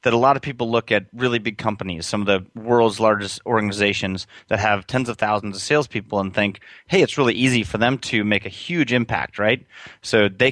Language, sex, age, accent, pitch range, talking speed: English, male, 30-49, American, 105-125 Hz, 220 wpm